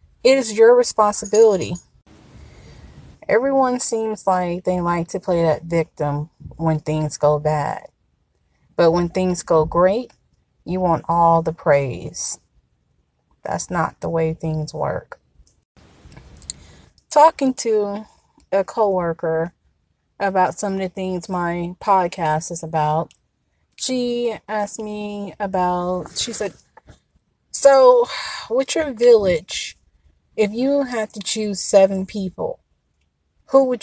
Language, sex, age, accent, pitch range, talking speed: English, female, 30-49, American, 160-215 Hz, 115 wpm